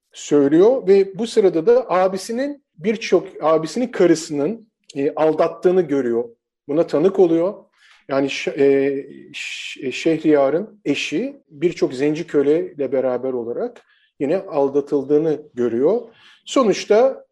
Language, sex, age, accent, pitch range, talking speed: Turkish, male, 40-59, native, 145-205 Hz, 100 wpm